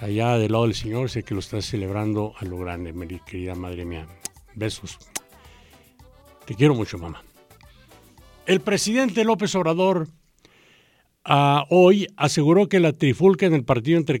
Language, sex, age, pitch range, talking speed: English, male, 50-69, 105-150 Hz, 150 wpm